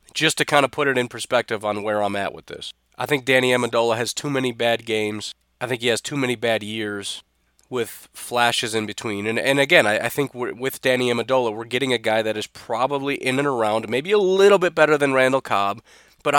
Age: 30-49